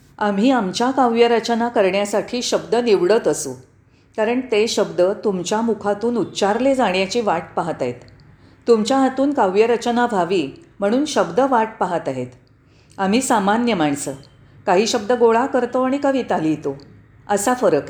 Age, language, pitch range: 40-59, Marathi, 160-240 Hz